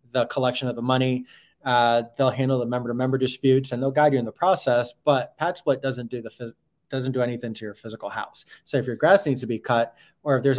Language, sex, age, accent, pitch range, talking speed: English, male, 20-39, American, 120-140 Hz, 250 wpm